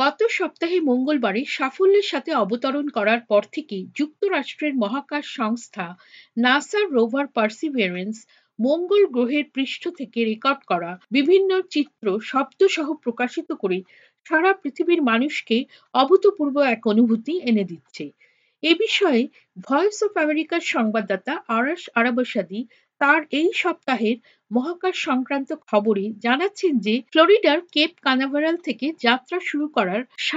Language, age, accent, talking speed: Bengali, 50-69, native, 30 wpm